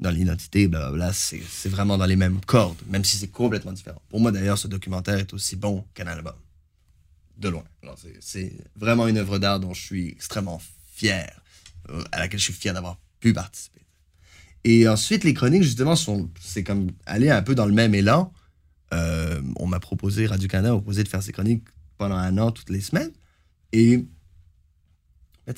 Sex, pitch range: male, 85-110 Hz